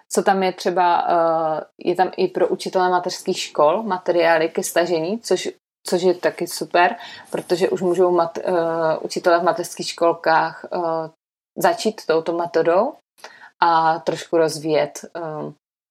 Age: 30-49